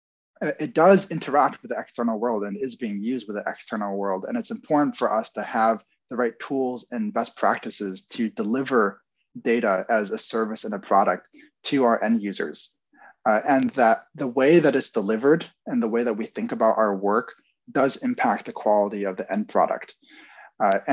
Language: English